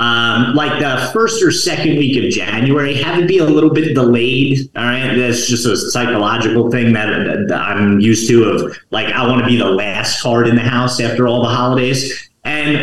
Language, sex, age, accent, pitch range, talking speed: English, male, 30-49, American, 120-155 Hz, 210 wpm